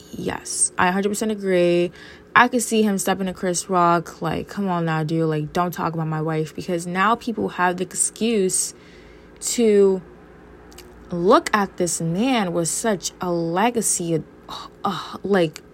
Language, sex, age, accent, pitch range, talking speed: English, female, 20-39, American, 160-210 Hz, 150 wpm